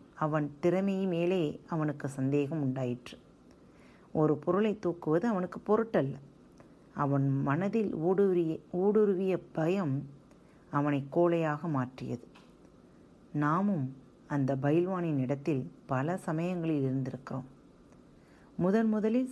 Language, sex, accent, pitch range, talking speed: Tamil, female, native, 145-190 Hz, 85 wpm